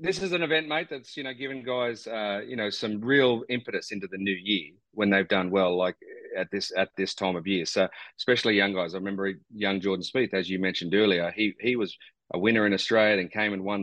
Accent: Australian